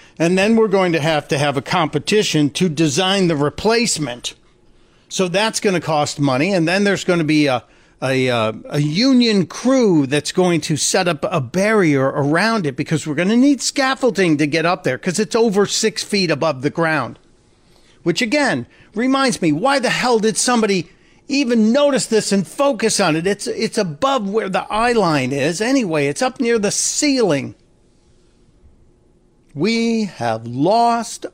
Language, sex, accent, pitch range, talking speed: English, male, American, 145-210 Hz, 175 wpm